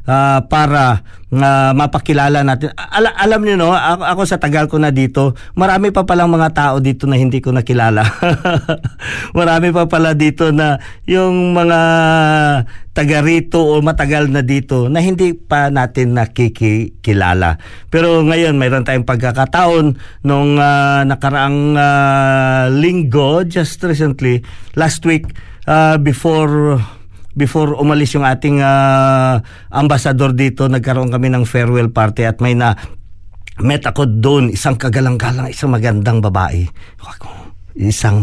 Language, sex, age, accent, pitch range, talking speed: Filipino, male, 50-69, native, 125-160 Hz, 130 wpm